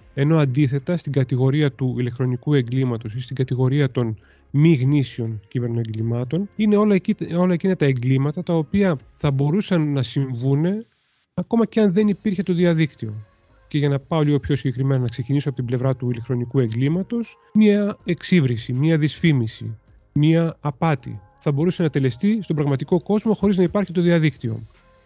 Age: 30-49